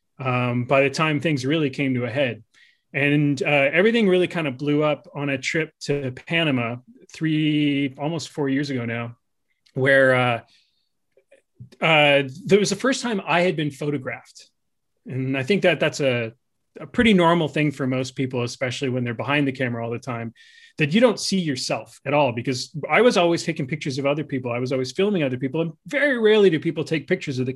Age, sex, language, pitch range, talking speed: 30-49, male, English, 130-185 Hz, 205 wpm